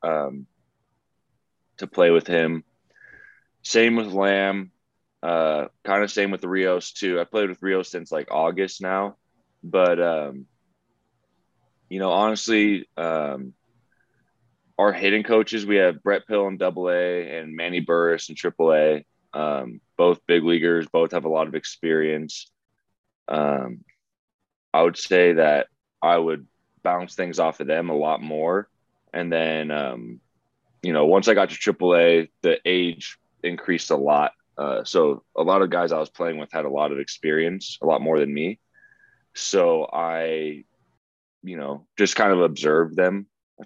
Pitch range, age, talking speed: 75-95 Hz, 20-39, 155 wpm